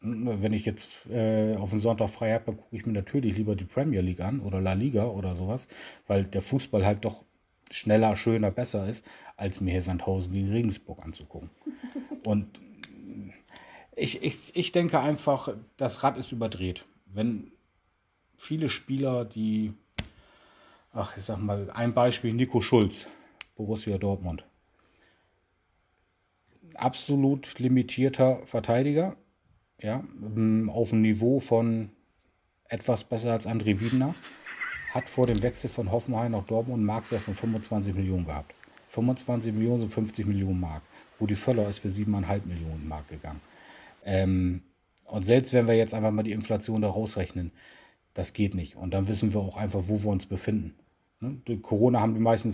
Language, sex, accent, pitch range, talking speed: German, male, German, 95-115 Hz, 155 wpm